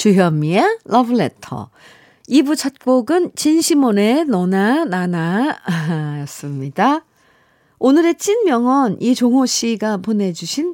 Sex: female